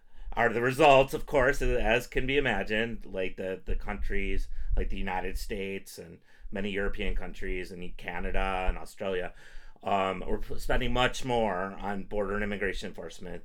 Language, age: English, 30-49